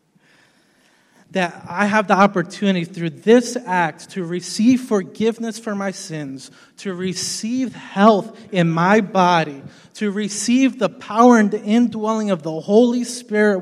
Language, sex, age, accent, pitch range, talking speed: English, male, 20-39, American, 190-245 Hz, 135 wpm